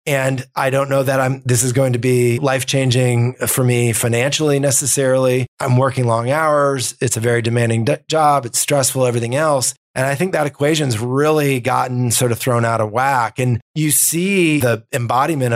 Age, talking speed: 30-49, 185 wpm